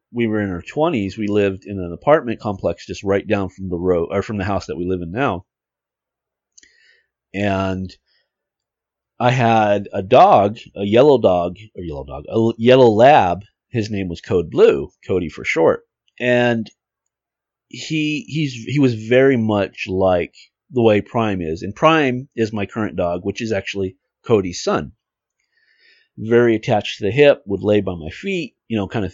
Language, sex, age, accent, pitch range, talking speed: English, male, 40-59, American, 95-125 Hz, 175 wpm